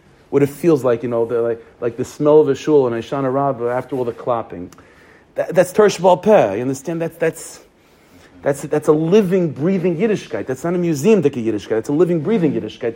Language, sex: English, male